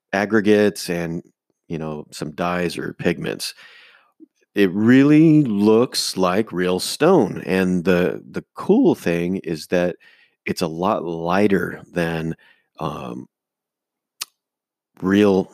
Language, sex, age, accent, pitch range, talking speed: English, male, 40-59, American, 85-100 Hz, 110 wpm